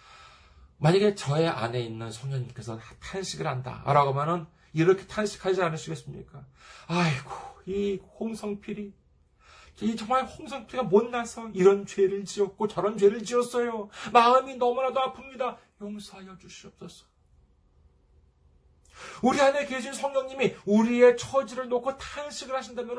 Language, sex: Korean, male